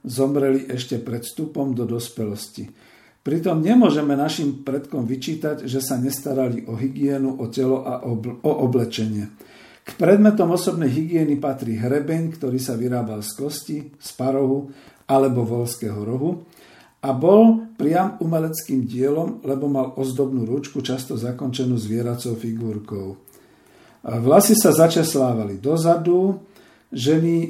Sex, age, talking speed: male, 50-69, 120 wpm